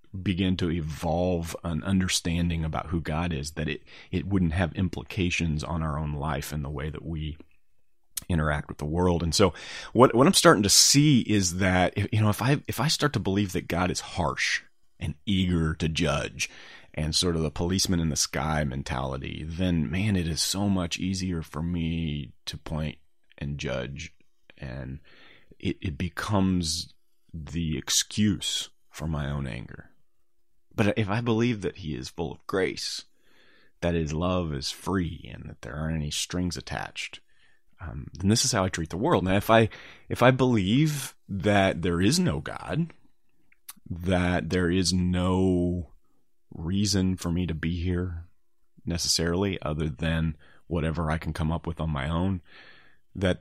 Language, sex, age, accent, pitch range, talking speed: English, male, 30-49, American, 80-95 Hz, 170 wpm